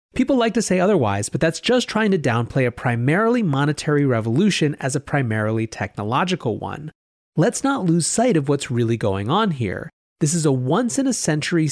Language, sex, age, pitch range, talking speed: English, male, 30-49, 125-190 Hz, 180 wpm